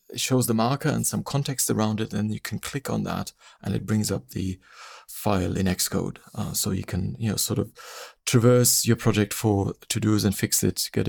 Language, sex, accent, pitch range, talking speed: English, male, German, 105-130 Hz, 215 wpm